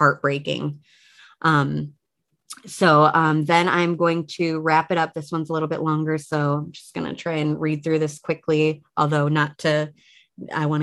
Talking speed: 185 wpm